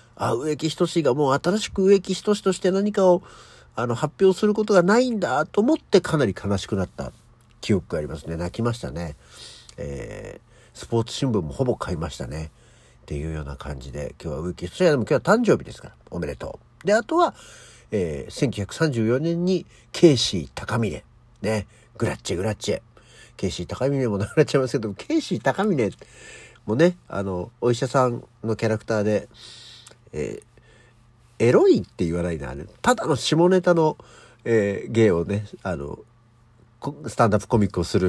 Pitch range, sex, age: 95-155 Hz, male, 50-69